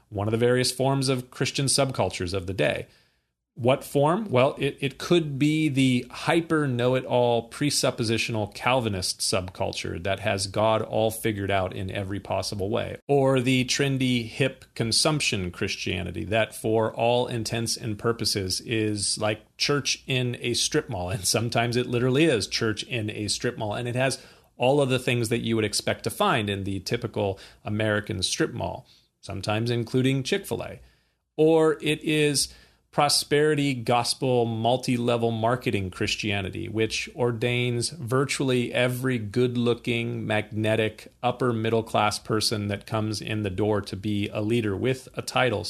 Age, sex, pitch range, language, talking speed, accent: 40-59, male, 105-130 Hz, English, 150 wpm, American